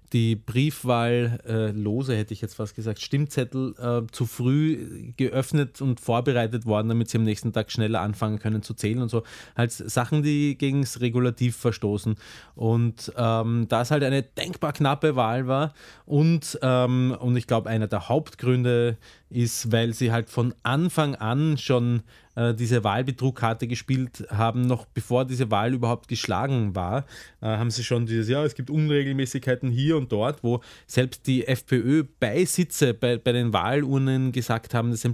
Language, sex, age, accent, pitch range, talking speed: German, male, 20-39, Austrian, 115-135 Hz, 160 wpm